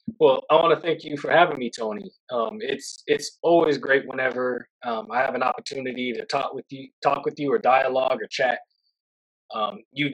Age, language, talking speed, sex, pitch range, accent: 20-39, English, 200 wpm, male, 130-200 Hz, American